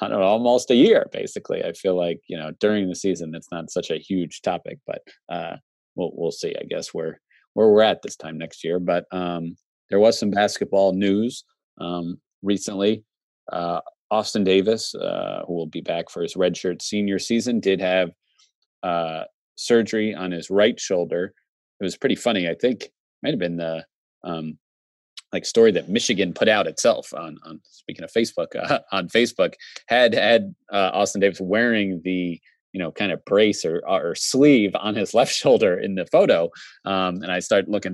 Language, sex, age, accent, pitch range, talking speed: English, male, 30-49, American, 85-110 Hz, 180 wpm